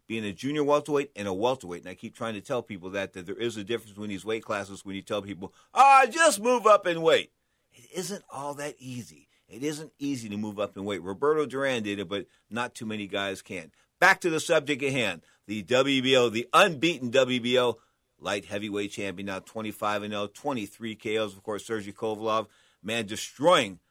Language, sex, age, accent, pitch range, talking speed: English, male, 50-69, American, 105-150 Hz, 205 wpm